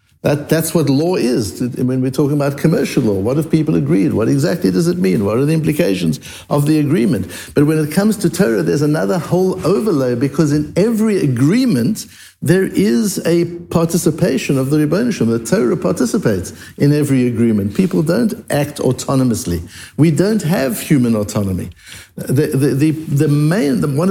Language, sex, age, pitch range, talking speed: English, male, 60-79, 115-170 Hz, 170 wpm